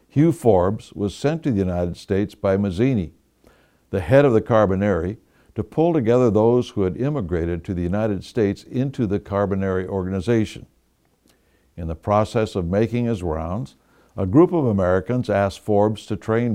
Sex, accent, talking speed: male, American, 165 wpm